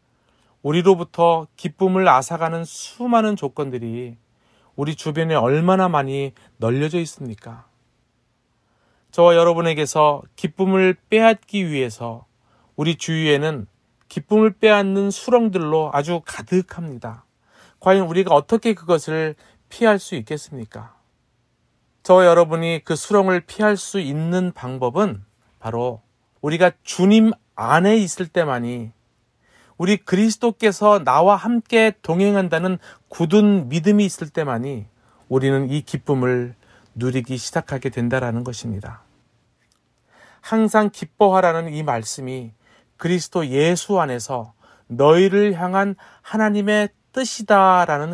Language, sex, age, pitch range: Korean, male, 40-59, 130-195 Hz